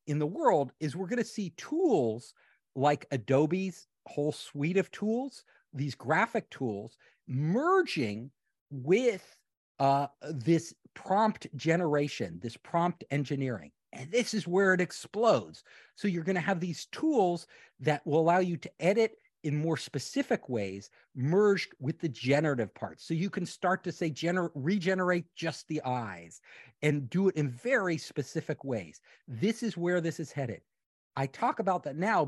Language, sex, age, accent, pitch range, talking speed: English, male, 50-69, American, 135-185 Hz, 150 wpm